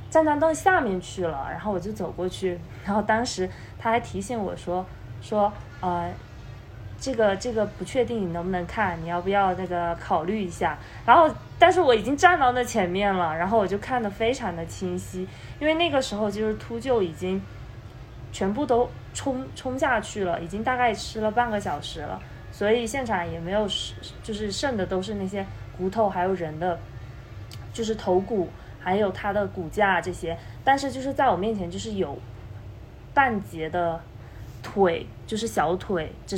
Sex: female